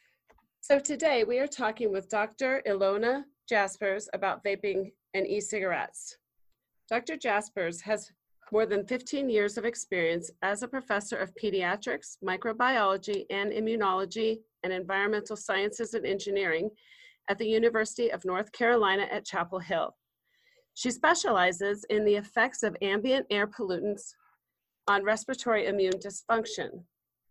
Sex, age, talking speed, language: female, 40-59, 125 wpm, English